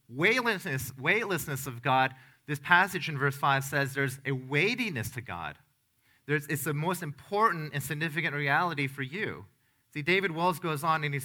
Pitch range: 135-180 Hz